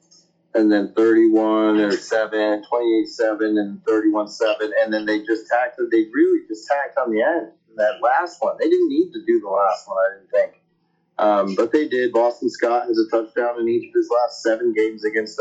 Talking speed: 190 wpm